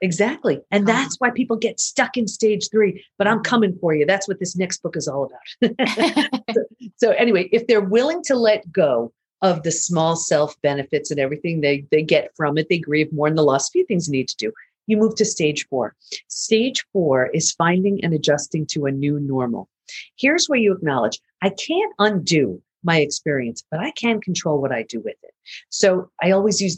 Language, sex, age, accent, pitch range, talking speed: English, female, 50-69, American, 155-230 Hz, 210 wpm